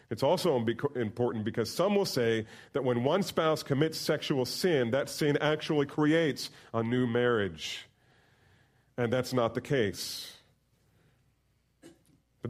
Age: 40-59